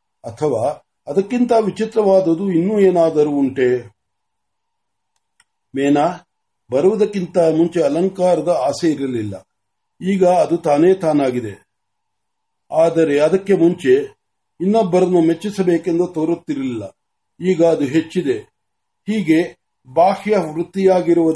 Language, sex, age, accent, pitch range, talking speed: Marathi, male, 50-69, native, 155-190 Hz, 40 wpm